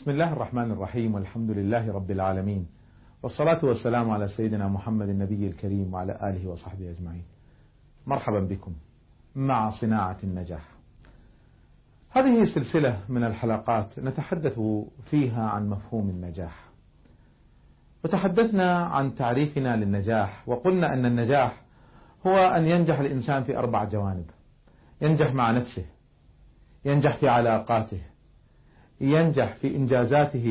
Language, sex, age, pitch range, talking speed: Arabic, male, 40-59, 110-170 Hz, 110 wpm